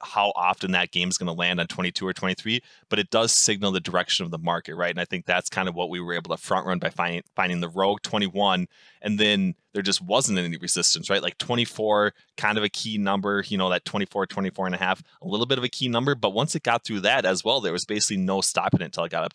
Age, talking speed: 20-39, 275 wpm